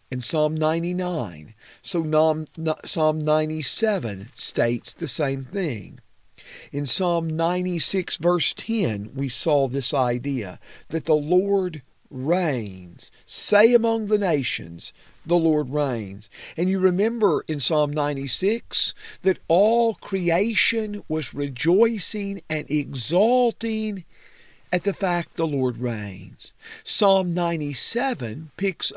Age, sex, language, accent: 50-69, male, English, American